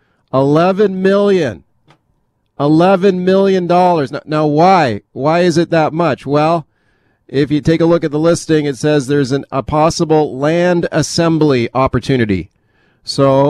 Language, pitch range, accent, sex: English, 125-155 Hz, American, male